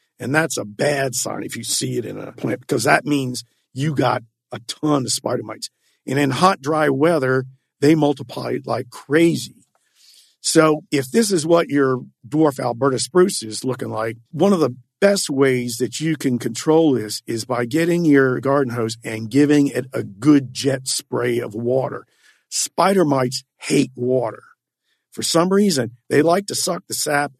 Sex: male